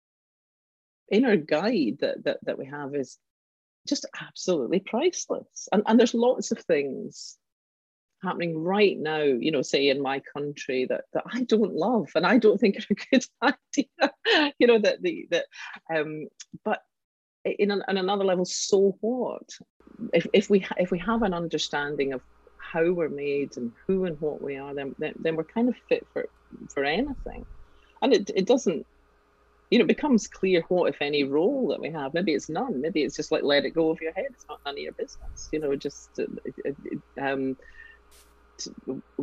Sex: female